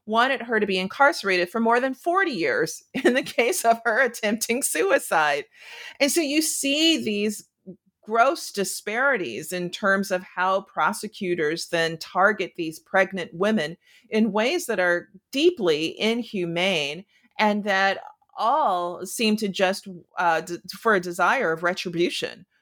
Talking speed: 140 wpm